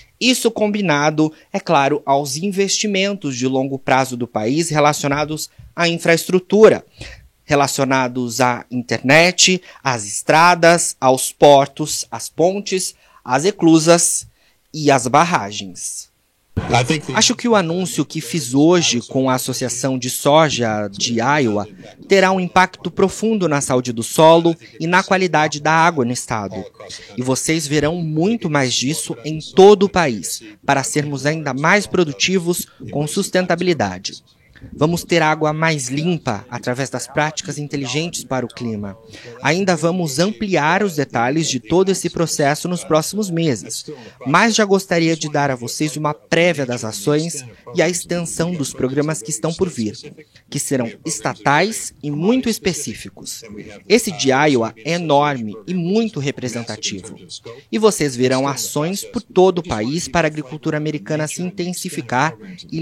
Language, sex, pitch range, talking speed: Portuguese, male, 130-175 Hz, 140 wpm